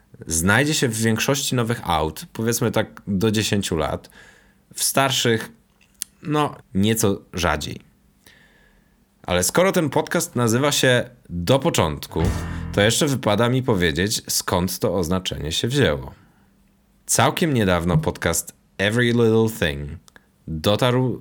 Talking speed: 115 wpm